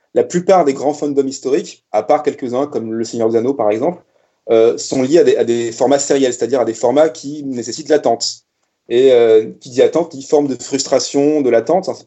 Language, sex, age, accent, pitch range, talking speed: French, male, 30-49, French, 120-155 Hz, 230 wpm